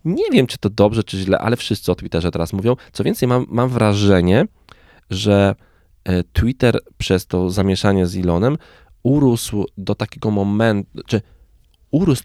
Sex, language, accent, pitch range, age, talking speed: male, Polish, native, 85-110 Hz, 20-39, 145 wpm